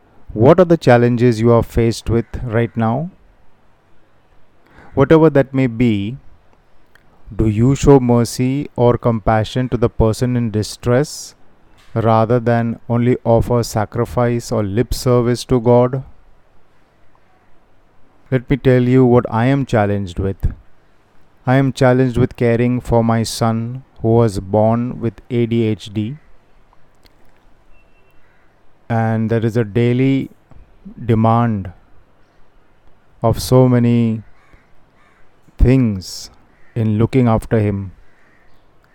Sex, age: male, 30-49